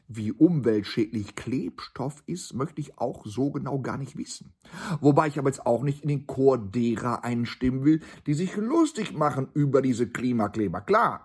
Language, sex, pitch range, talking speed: German, male, 120-160 Hz, 170 wpm